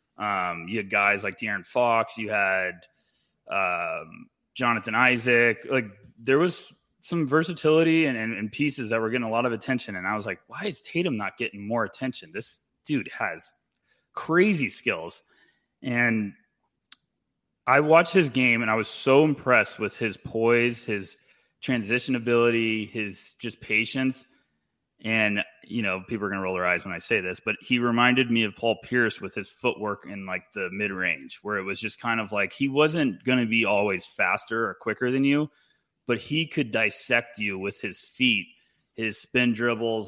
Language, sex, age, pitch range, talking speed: English, male, 20-39, 110-130 Hz, 175 wpm